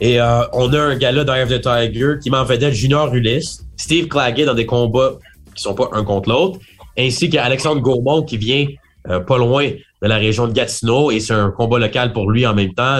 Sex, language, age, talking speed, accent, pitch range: male, French, 30-49, 230 wpm, Canadian, 115-145 Hz